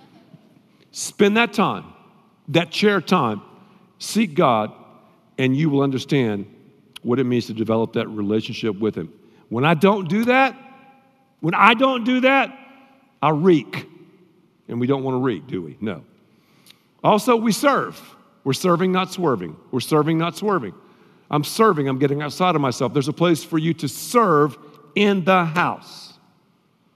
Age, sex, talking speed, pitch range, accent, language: 50-69, male, 155 wpm, 150-215 Hz, American, English